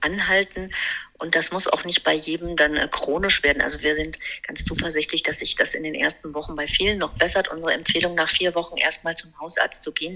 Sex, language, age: female, German, 40-59